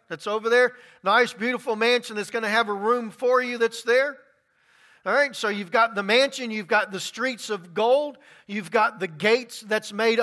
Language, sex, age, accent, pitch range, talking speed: English, male, 40-59, American, 225-275 Hz, 205 wpm